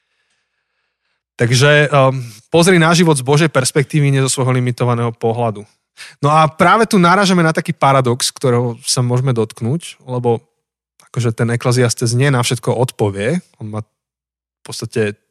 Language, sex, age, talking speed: Slovak, male, 20-39, 140 wpm